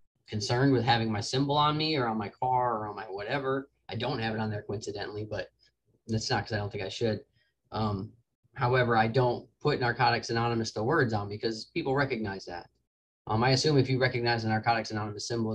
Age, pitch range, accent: 20-39, 110-130 Hz, American